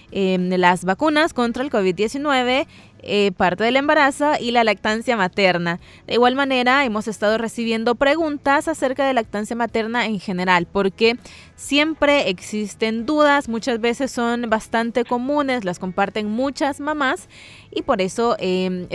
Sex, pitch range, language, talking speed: female, 200-255 Hz, Spanish, 140 wpm